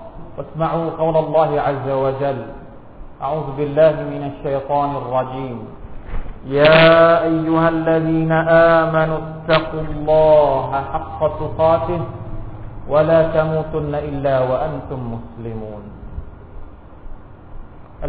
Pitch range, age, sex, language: 115-155 Hz, 40-59, male, Thai